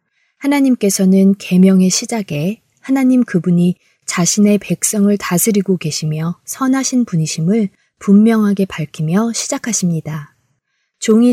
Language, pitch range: Korean, 165-210 Hz